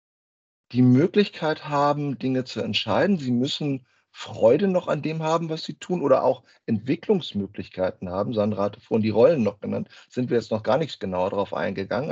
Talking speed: 180 wpm